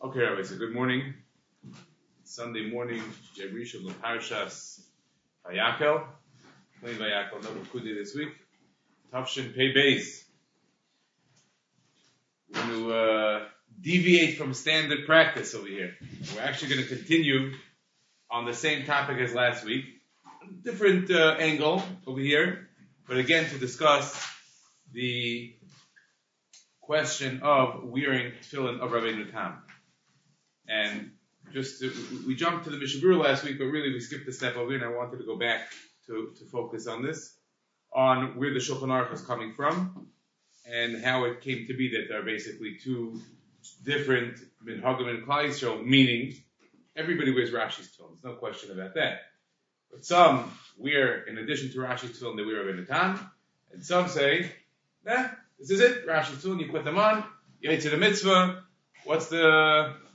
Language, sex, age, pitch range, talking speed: English, male, 30-49, 120-155 Hz, 150 wpm